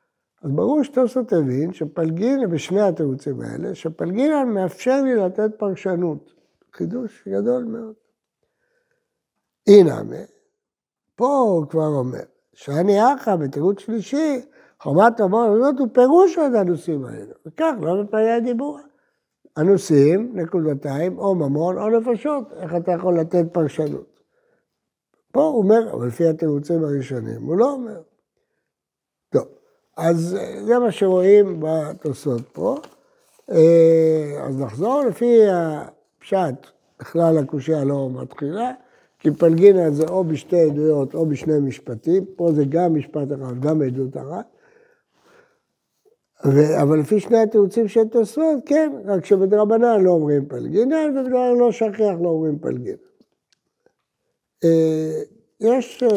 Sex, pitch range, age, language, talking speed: male, 155-245 Hz, 60-79, Hebrew, 115 wpm